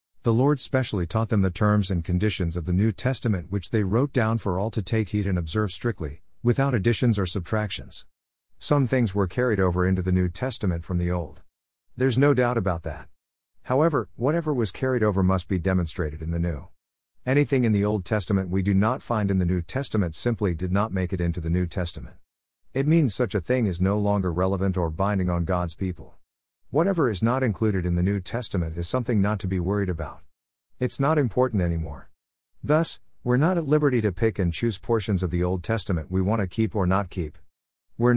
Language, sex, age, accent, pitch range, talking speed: English, male, 50-69, American, 90-115 Hz, 210 wpm